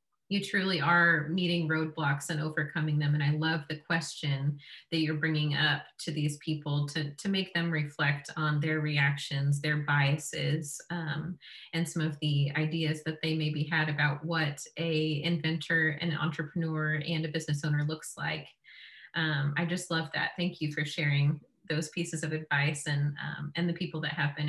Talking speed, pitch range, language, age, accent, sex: 180 wpm, 150-170 Hz, English, 30-49, American, female